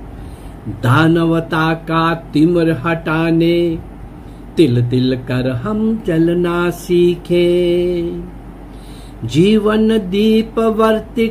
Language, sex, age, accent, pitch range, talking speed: Hindi, male, 50-69, native, 175-260 Hz, 70 wpm